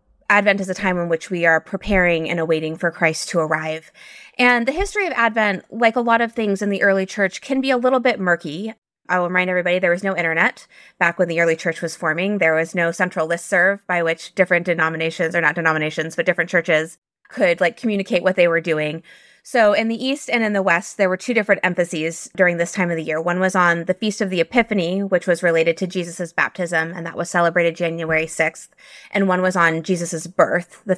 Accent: American